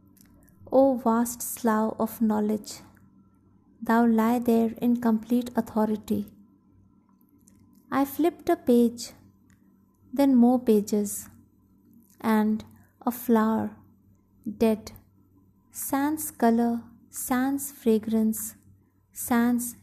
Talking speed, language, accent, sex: 80 wpm, English, Indian, female